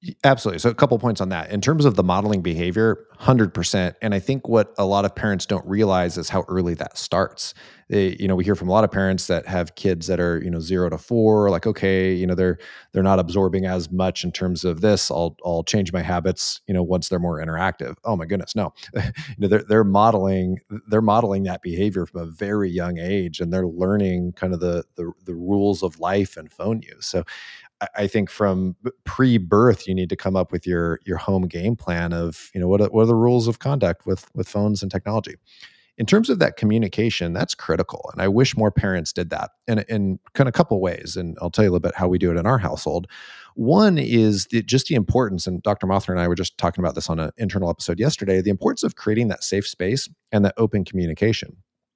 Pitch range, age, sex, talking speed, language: 90-110 Hz, 30-49, male, 240 wpm, English